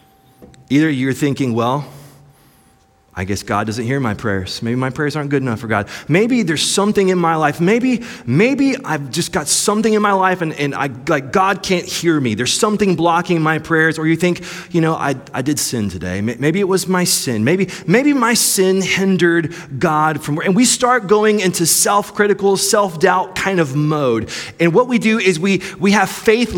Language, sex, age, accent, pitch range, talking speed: English, male, 30-49, American, 135-195 Hz, 200 wpm